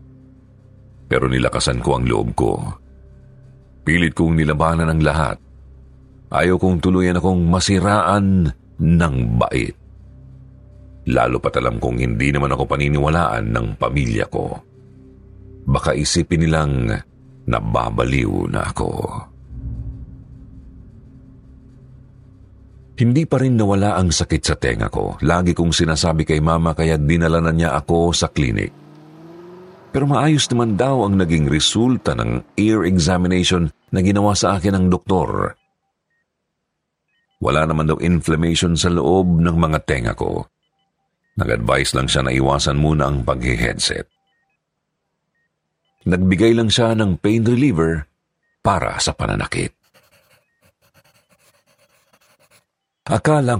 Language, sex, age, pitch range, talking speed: Filipino, male, 50-69, 70-100 Hz, 110 wpm